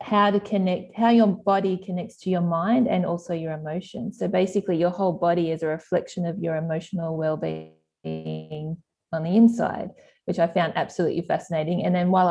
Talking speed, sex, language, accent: 180 wpm, female, English, Australian